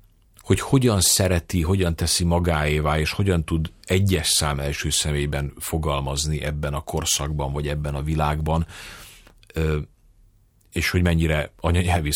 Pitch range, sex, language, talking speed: 80-95 Hz, male, Hungarian, 125 wpm